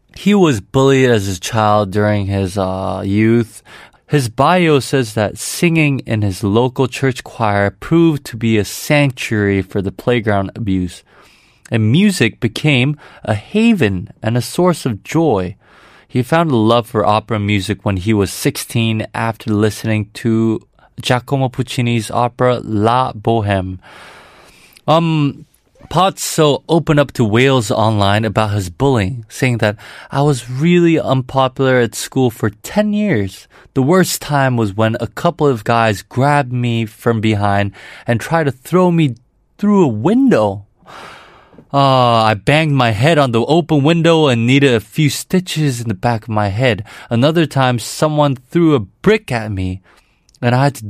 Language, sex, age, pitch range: Korean, male, 20-39, 110-145 Hz